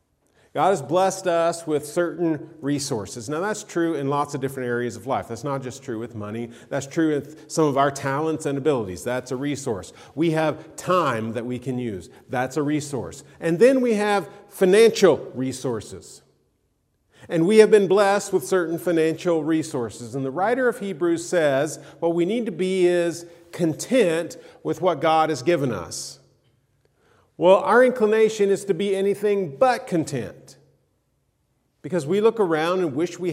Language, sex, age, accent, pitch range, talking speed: English, male, 40-59, American, 125-175 Hz, 170 wpm